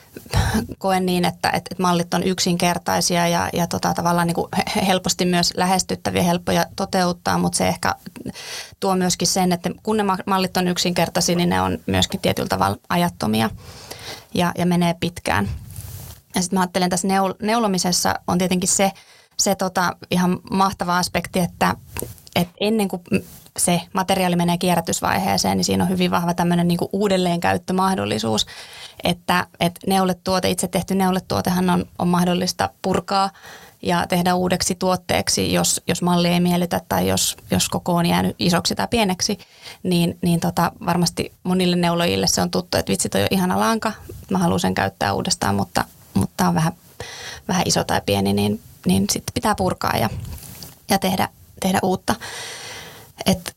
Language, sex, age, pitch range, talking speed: Finnish, female, 30-49, 170-185 Hz, 150 wpm